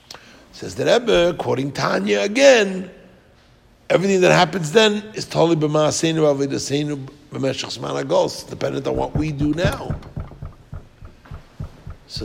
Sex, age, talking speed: male, 60-79, 95 wpm